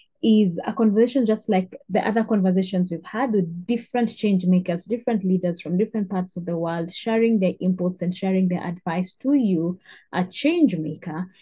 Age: 20-39